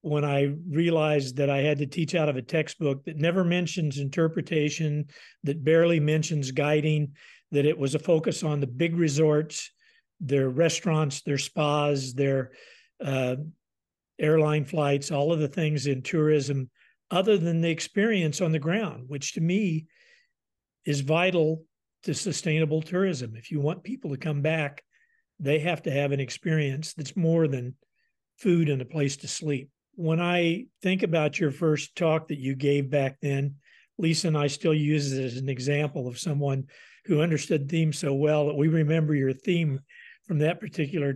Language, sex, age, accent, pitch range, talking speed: English, male, 50-69, American, 140-170 Hz, 170 wpm